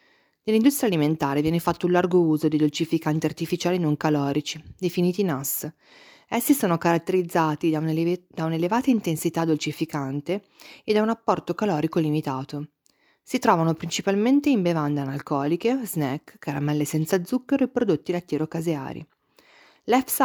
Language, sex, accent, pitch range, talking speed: Italian, female, native, 150-200 Hz, 125 wpm